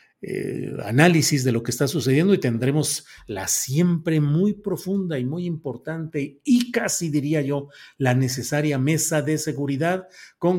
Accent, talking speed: Mexican, 145 wpm